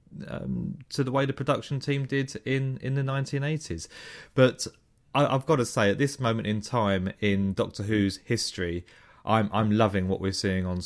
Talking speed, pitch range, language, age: 195 wpm, 95-120 Hz, English, 30-49